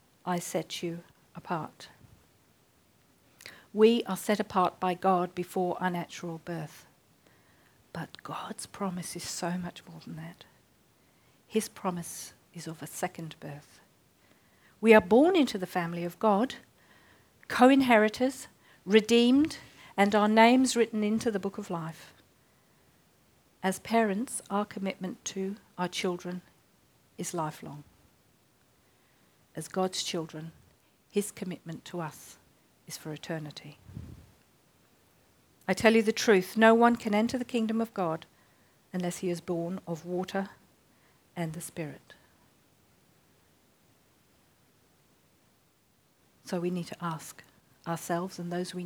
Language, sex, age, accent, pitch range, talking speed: English, female, 50-69, British, 165-210 Hz, 120 wpm